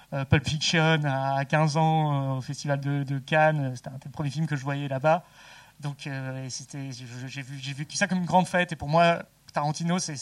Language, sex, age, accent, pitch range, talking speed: French, male, 30-49, French, 140-165 Hz, 230 wpm